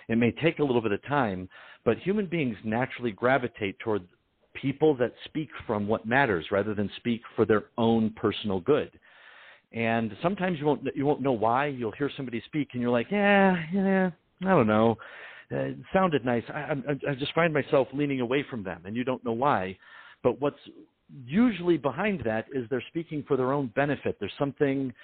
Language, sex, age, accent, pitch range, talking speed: English, male, 50-69, American, 125-155 Hz, 195 wpm